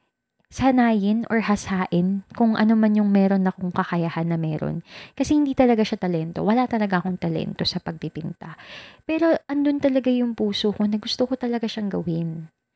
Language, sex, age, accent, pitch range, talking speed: Filipino, female, 20-39, native, 180-240 Hz, 165 wpm